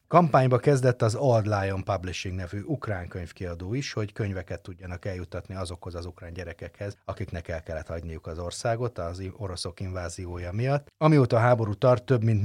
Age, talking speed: 30-49, 165 wpm